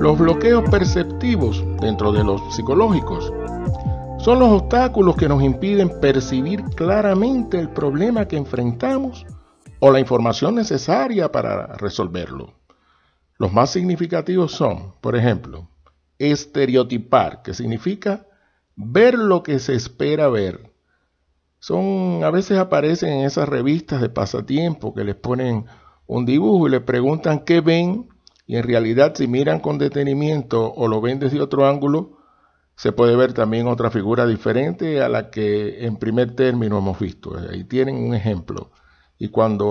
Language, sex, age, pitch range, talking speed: Spanish, male, 60-79, 105-150 Hz, 140 wpm